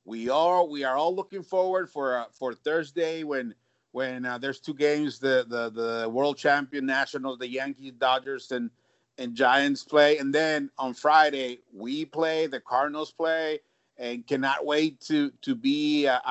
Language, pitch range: English, 130-175 Hz